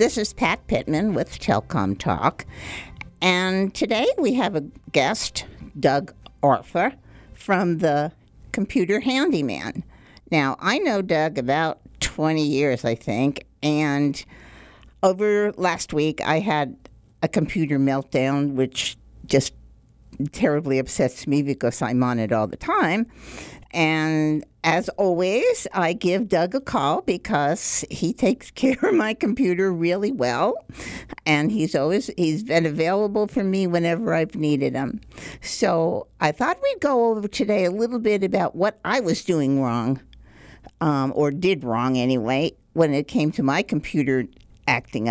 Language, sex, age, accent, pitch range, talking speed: English, female, 50-69, American, 145-210 Hz, 140 wpm